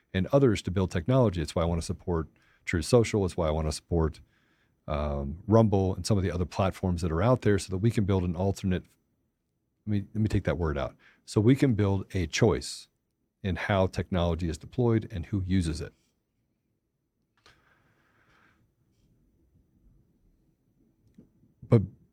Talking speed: 170 wpm